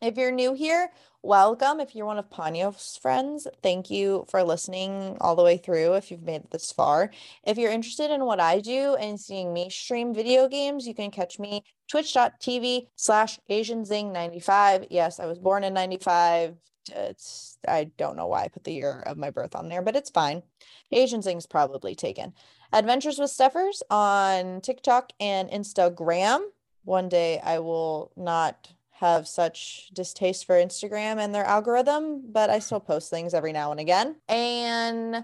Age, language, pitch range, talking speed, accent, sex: 20-39, English, 180-245 Hz, 170 wpm, American, female